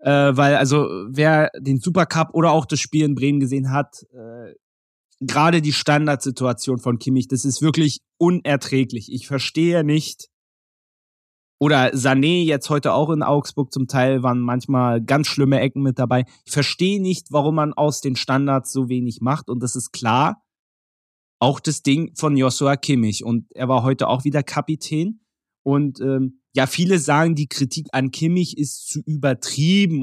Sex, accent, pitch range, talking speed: male, German, 130-170 Hz, 165 wpm